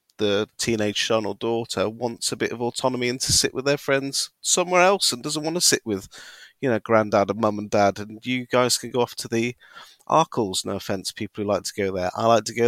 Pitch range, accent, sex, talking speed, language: 105-145 Hz, British, male, 245 wpm, English